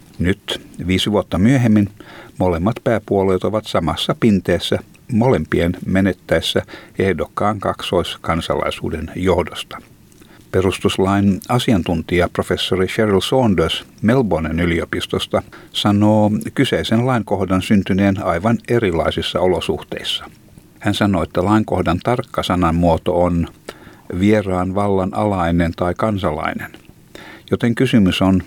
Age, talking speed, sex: 60-79, 90 wpm, male